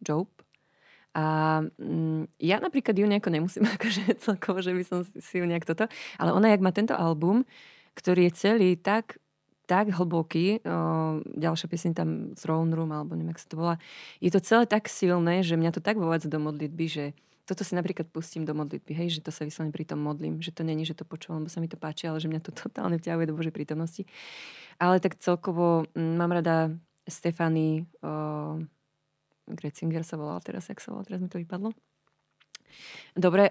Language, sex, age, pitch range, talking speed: Slovak, female, 20-39, 155-175 Hz, 190 wpm